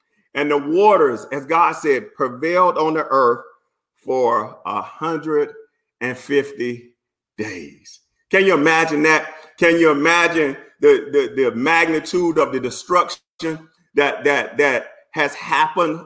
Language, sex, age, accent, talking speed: English, male, 40-59, American, 120 wpm